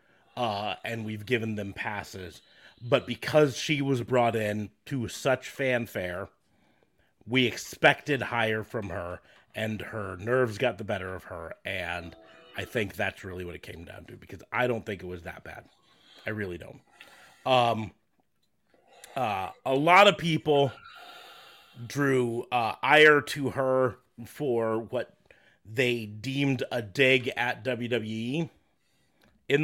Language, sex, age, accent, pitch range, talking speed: English, male, 30-49, American, 105-135 Hz, 140 wpm